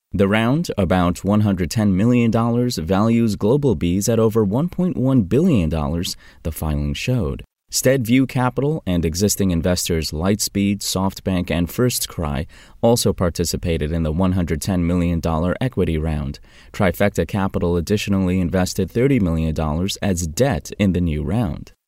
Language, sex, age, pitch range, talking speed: English, male, 20-39, 85-115 Hz, 120 wpm